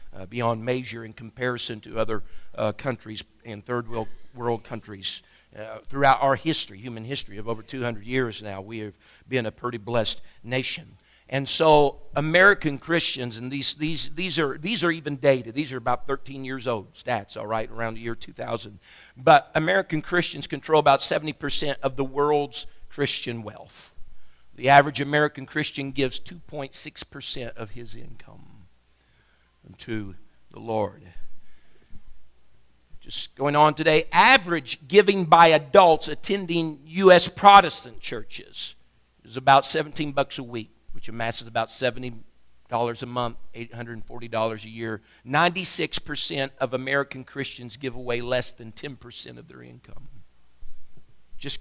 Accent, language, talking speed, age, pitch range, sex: American, English, 135 wpm, 50-69, 110-150 Hz, male